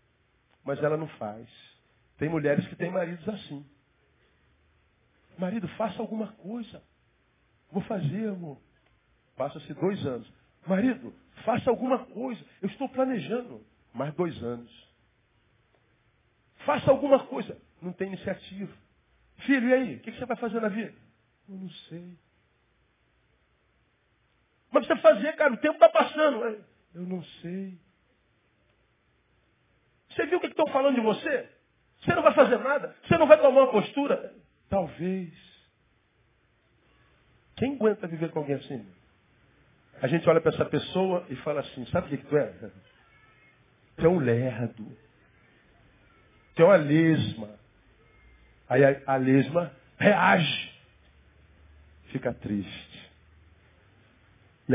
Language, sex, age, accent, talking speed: Portuguese, male, 40-59, Brazilian, 125 wpm